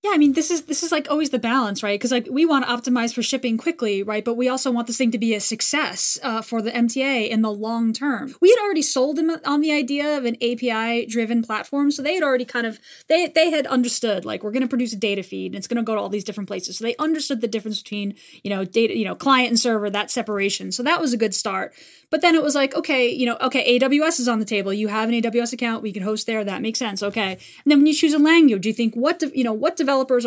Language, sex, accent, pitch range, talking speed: English, female, American, 225-285 Hz, 285 wpm